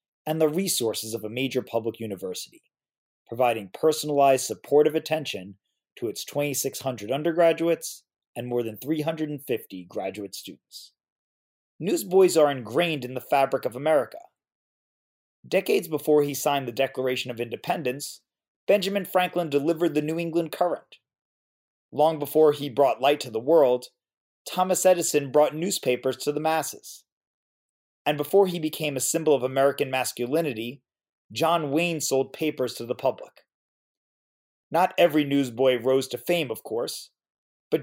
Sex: male